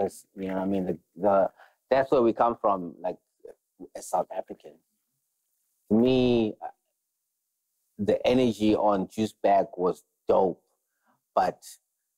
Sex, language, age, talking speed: male, English, 30-49, 130 wpm